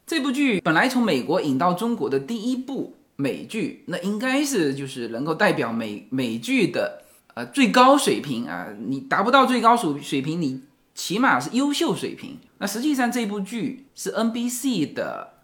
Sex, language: male, Chinese